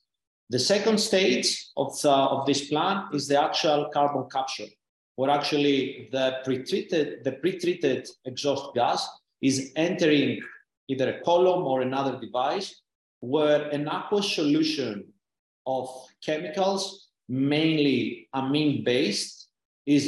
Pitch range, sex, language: 135-170 Hz, male, English